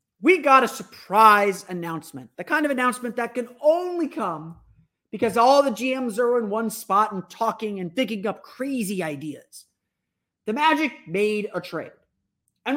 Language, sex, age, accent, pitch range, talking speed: English, male, 30-49, American, 180-250 Hz, 160 wpm